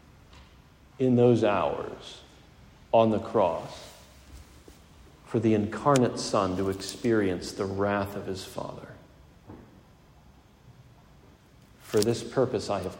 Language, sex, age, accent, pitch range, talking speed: English, male, 40-59, American, 95-135 Hz, 100 wpm